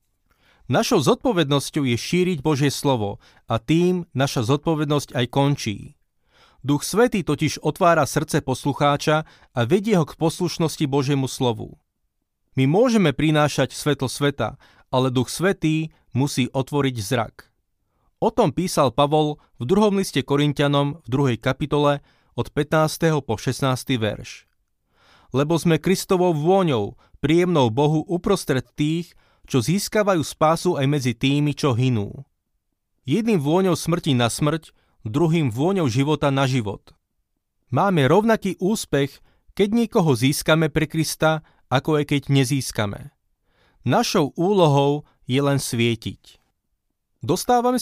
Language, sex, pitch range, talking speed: Slovak, male, 130-165 Hz, 120 wpm